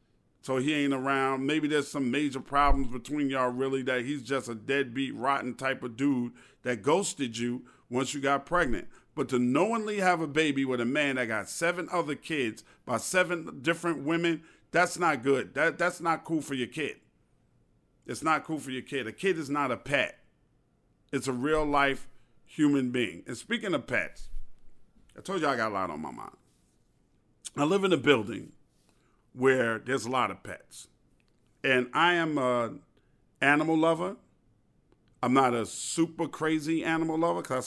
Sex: male